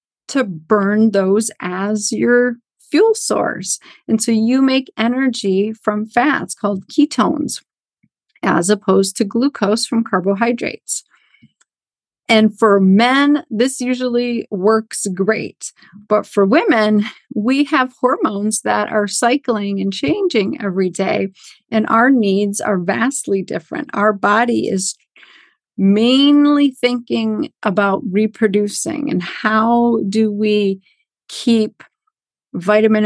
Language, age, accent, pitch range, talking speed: English, 50-69, American, 200-235 Hz, 110 wpm